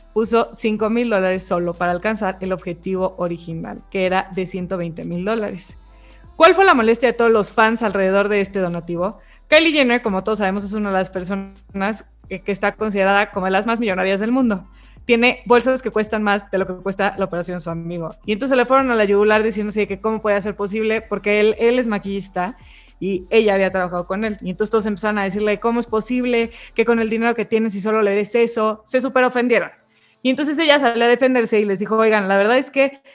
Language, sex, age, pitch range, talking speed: Spanish, female, 20-39, 190-230 Hz, 220 wpm